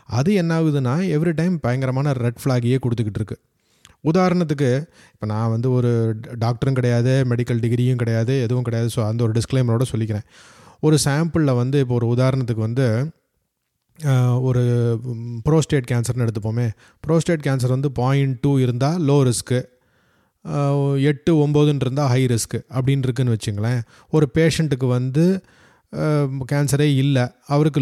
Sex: male